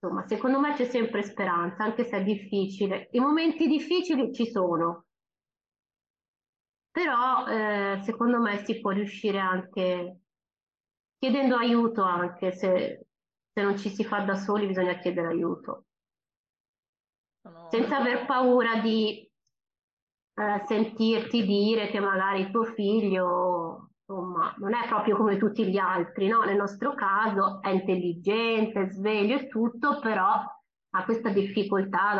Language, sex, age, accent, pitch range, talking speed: Italian, female, 20-39, native, 200-265 Hz, 135 wpm